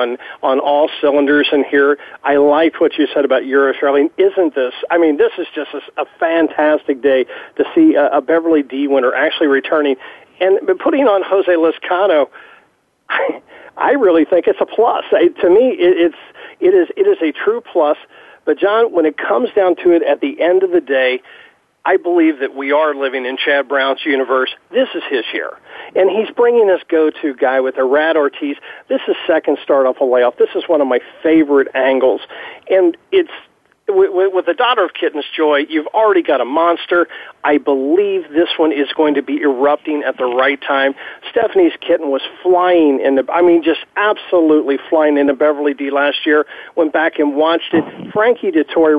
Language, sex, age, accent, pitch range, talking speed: English, male, 50-69, American, 140-185 Hz, 195 wpm